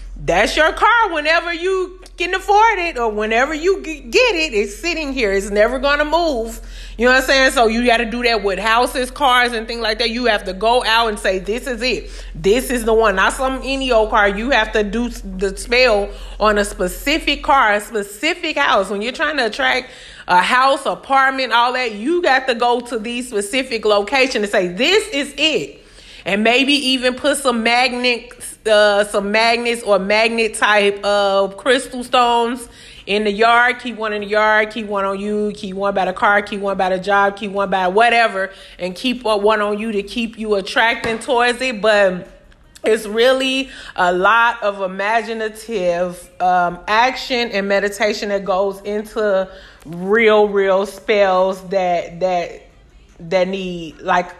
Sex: female